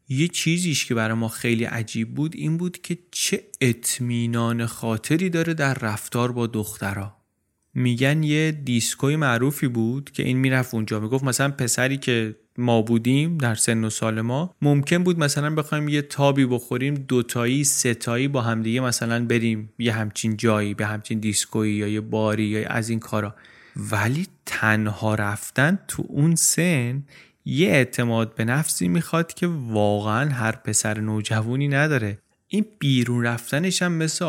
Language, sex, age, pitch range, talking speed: Persian, male, 30-49, 115-150 Hz, 155 wpm